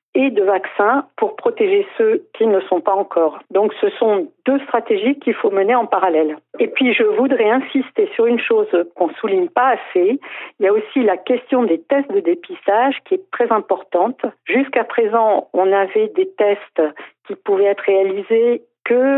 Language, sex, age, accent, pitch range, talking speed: French, female, 50-69, French, 195-325 Hz, 180 wpm